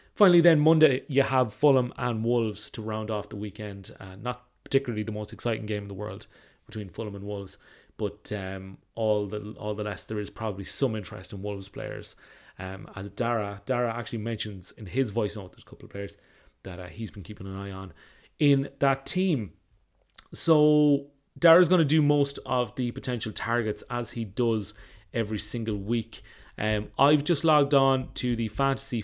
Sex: male